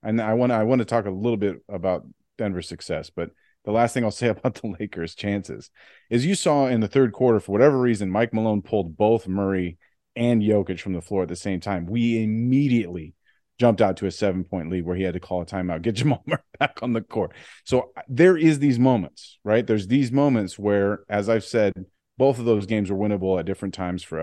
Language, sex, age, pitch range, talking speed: English, male, 30-49, 95-115 Hz, 225 wpm